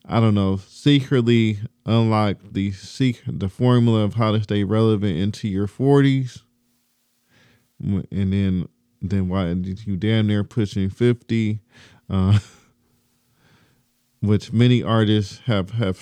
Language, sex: English, male